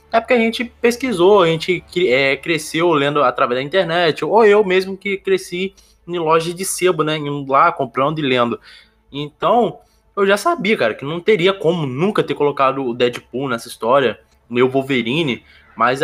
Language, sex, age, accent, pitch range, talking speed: Portuguese, male, 20-39, Brazilian, 155-220 Hz, 175 wpm